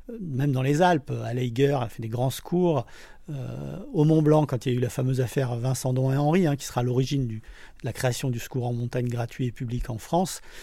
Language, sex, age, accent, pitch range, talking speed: French, male, 40-59, French, 125-150 Hz, 250 wpm